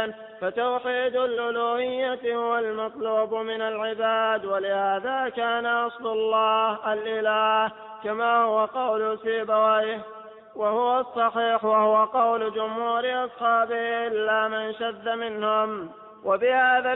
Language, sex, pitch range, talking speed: Arabic, male, 215-235 Hz, 90 wpm